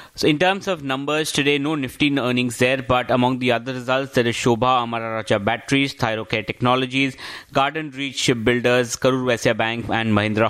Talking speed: 170 wpm